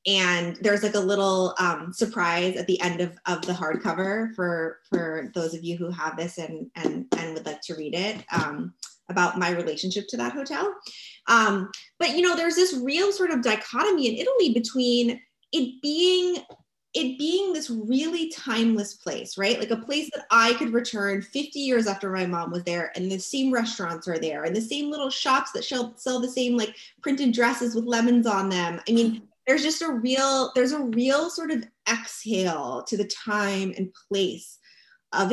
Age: 20-39